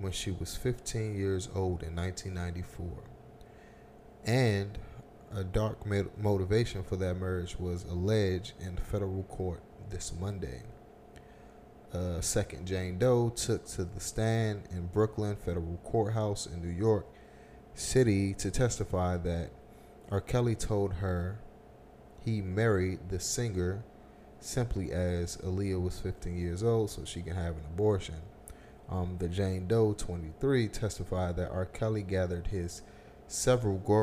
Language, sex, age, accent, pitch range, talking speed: English, male, 30-49, American, 90-105 Hz, 135 wpm